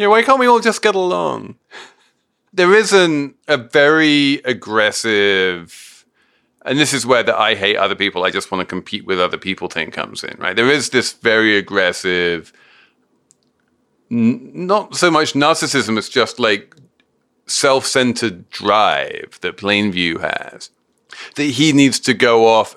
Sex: male